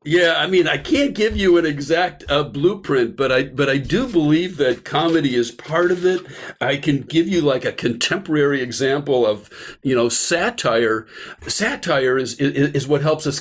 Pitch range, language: 130-165 Hz, English